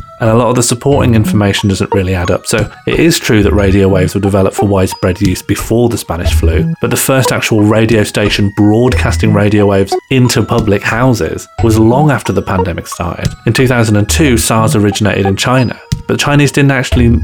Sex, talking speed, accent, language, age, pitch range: male, 195 wpm, British, English, 30-49, 100-125 Hz